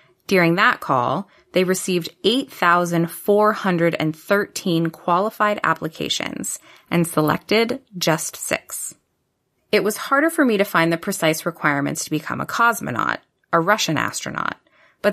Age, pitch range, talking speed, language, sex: 20-39, 155-210 Hz, 120 wpm, English, female